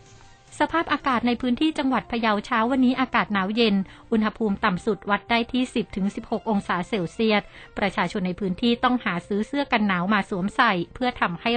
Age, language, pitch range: 60-79, Thai, 195-245 Hz